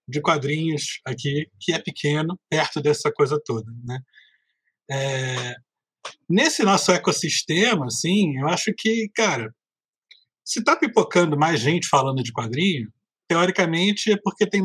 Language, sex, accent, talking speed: Portuguese, male, Brazilian, 130 wpm